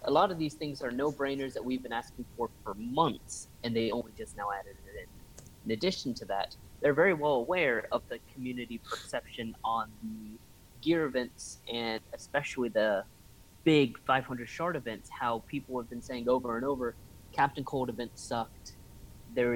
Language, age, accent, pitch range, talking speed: English, 20-39, American, 115-140 Hz, 180 wpm